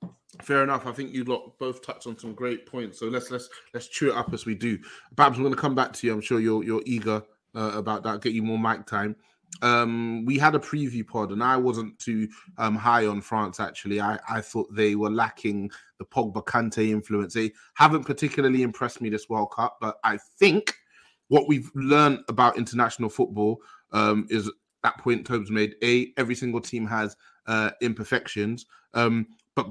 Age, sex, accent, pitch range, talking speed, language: 20-39, male, British, 110-135 Hz, 205 wpm, English